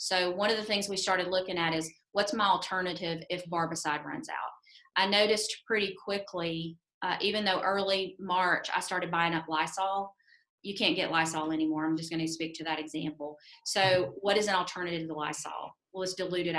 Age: 30-49